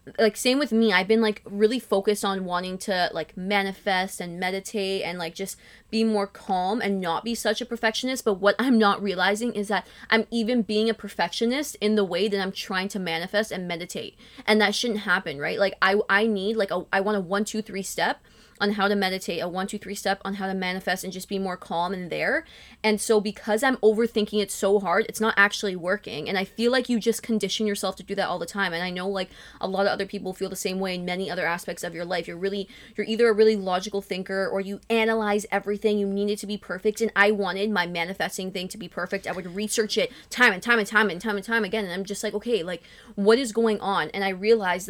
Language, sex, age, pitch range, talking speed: English, female, 20-39, 190-220 Hz, 250 wpm